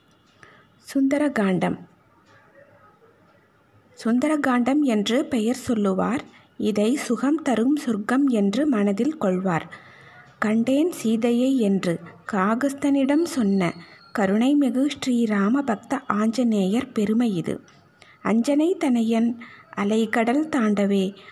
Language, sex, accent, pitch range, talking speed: Tamil, female, native, 205-260 Hz, 80 wpm